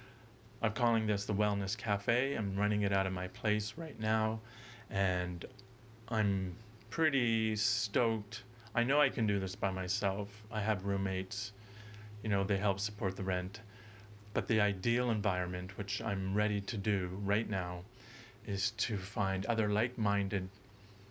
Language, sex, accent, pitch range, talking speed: English, male, American, 100-115 Hz, 150 wpm